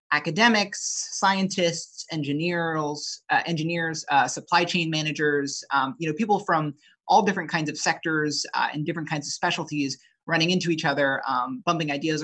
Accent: American